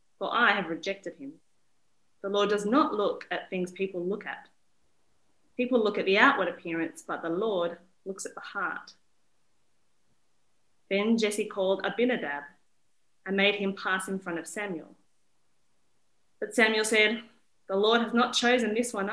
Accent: Australian